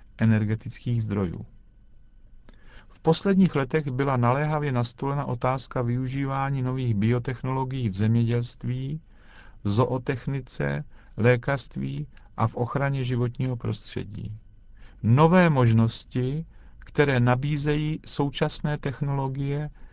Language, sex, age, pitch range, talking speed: Czech, male, 50-69, 110-140 Hz, 85 wpm